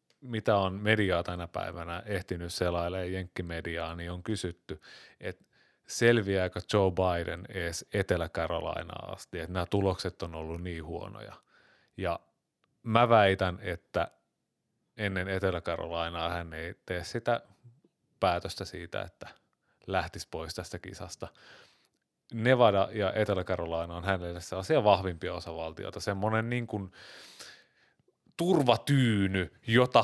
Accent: native